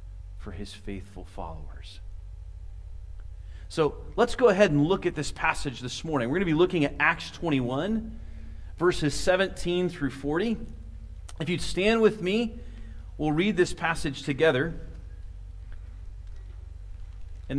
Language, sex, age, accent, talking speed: English, male, 40-59, American, 130 wpm